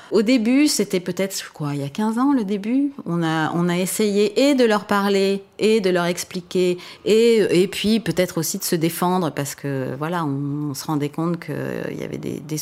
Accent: French